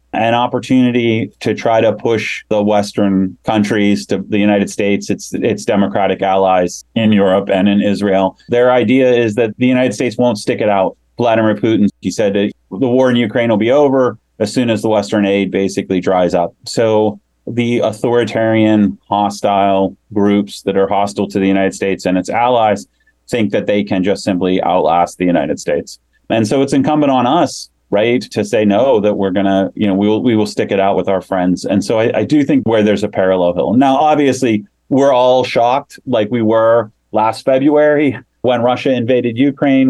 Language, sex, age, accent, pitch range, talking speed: English, male, 30-49, American, 100-120 Hz, 195 wpm